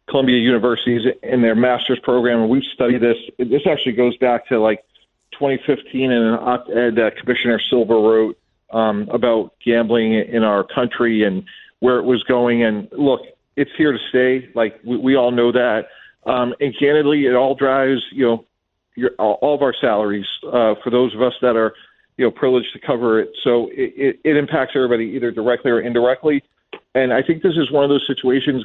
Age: 40-59